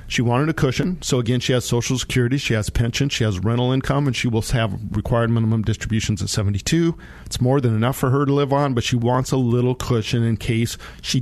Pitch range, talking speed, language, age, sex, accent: 110-125 Hz, 235 wpm, English, 40-59, male, American